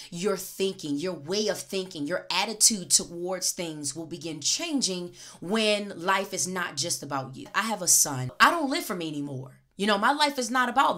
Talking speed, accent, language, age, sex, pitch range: 200 wpm, American, English, 20-39, female, 160-215 Hz